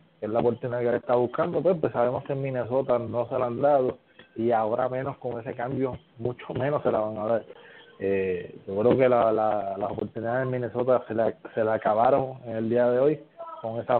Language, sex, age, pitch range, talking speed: English, male, 20-39, 115-135 Hz, 225 wpm